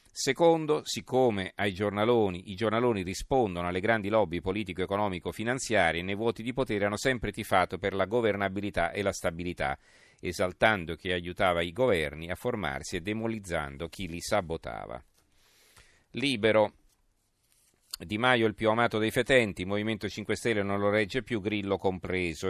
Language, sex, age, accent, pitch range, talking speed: Italian, male, 40-59, native, 90-110 Hz, 145 wpm